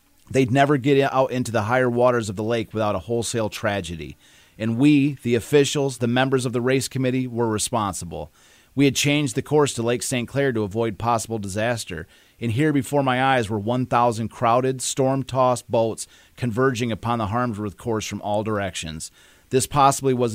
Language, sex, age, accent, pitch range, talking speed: English, male, 30-49, American, 105-130 Hz, 180 wpm